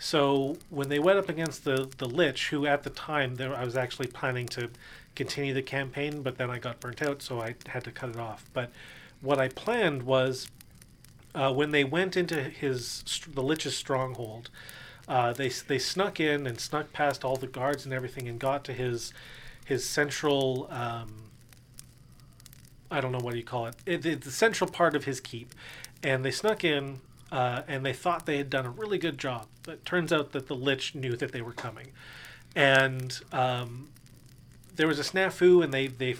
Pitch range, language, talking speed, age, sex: 125-150 Hz, English, 200 wpm, 40-59, male